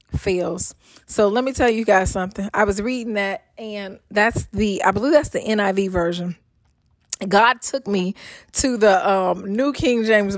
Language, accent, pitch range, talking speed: English, American, 195-250 Hz, 175 wpm